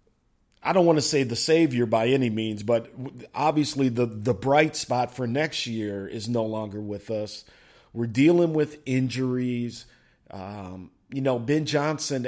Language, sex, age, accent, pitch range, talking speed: English, male, 40-59, American, 115-140 Hz, 160 wpm